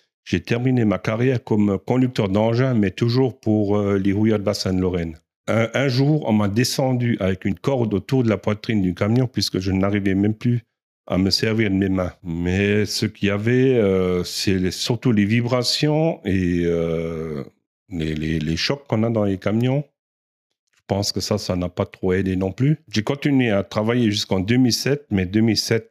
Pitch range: 90-115 Hz